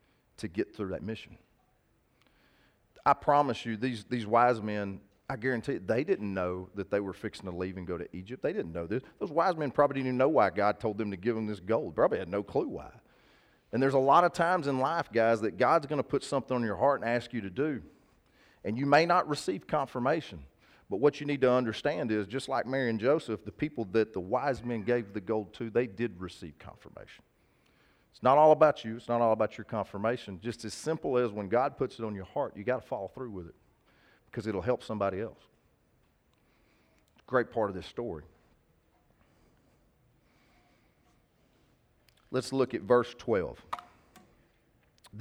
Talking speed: 200 wpm